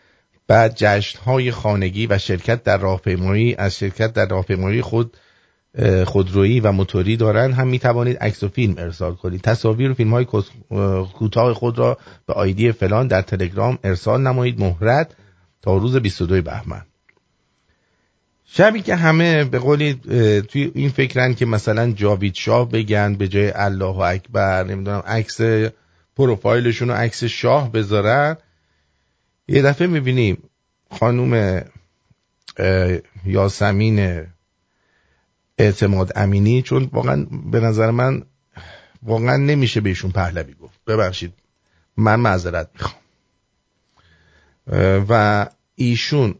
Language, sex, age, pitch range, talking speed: English, male, 50-69, 95-125 Hz, 115 wpm